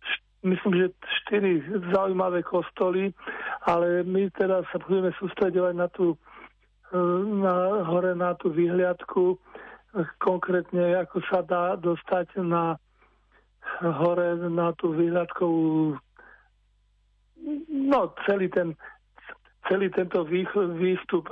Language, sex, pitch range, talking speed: Slovak, male, 170-185 Hz, 100 wpm